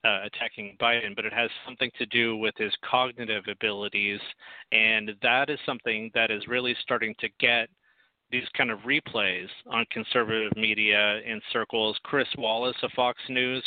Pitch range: 120-150 Hz